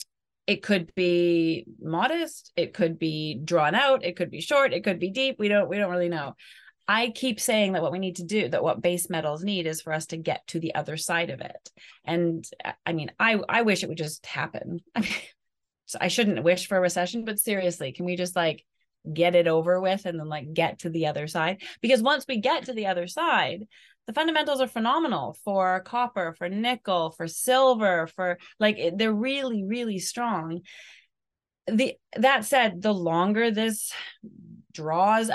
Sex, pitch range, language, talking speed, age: female, 170-220 Hz, English, 195 wpm, 30-49